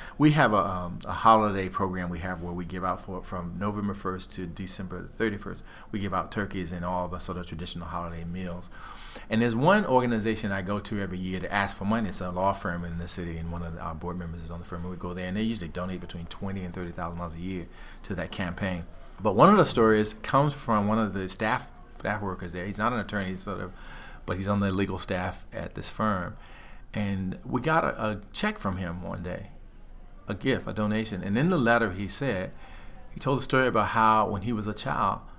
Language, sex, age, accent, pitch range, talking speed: English, male, 40-59, American, 90-105 Hz, 235 wpm